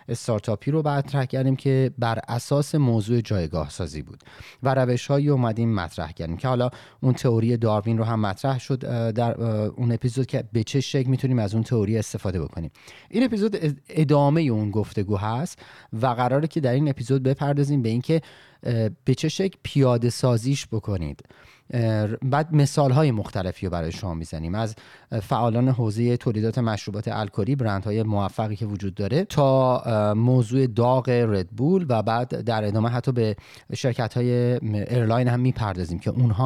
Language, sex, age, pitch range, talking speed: Persian, male, 30-49, 110-135 Hz, 160 wpm